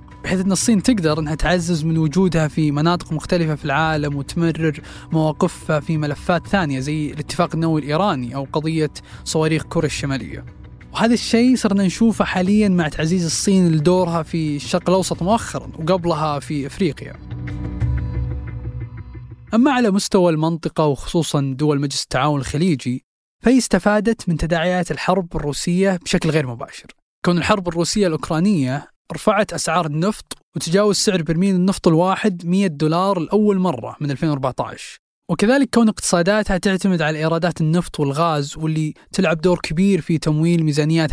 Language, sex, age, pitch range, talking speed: Arabic, male, 20-39, 155-195 Hz, 135 wpm